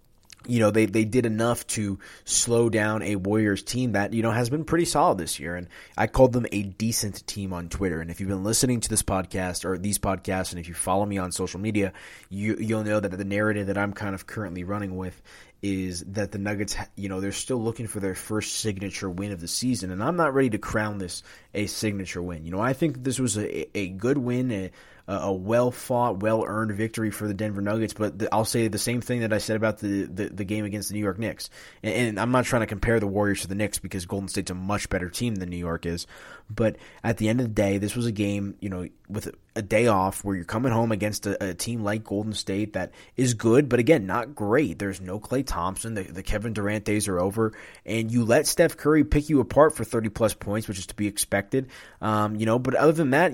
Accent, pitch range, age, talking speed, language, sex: American, 100-115 Hz, 20-39, 250 wpm, English, male